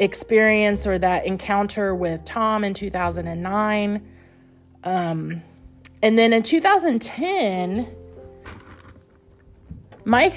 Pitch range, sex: 150-220 Hz, female